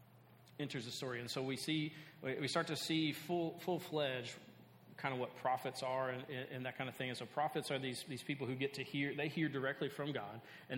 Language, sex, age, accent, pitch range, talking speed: English, male, 40-59, American, 125-150 Hz, 235 wpm